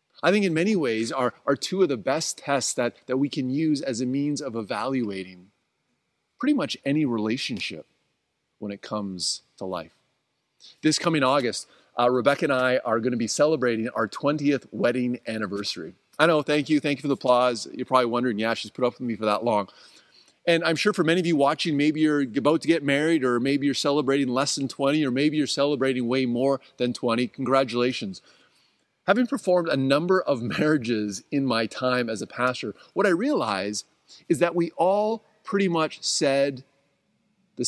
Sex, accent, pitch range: male, American, 120-155 Hz